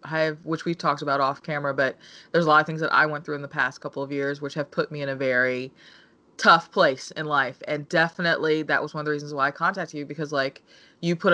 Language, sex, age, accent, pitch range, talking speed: English, female, 20-39, American, 150-170 Hz, 270 wpm